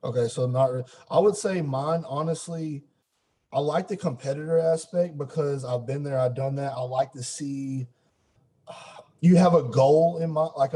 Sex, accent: male, American